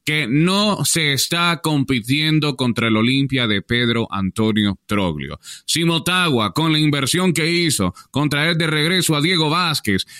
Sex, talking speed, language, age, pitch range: male, 145 wpm, English, 30-49, 135-185 Hz